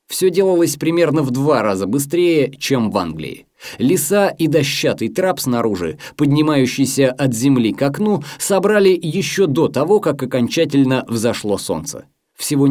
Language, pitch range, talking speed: Russian, 125-180 Hz, 135 wpm